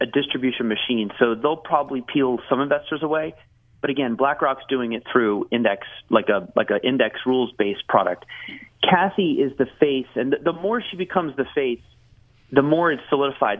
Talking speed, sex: 175 wpm, male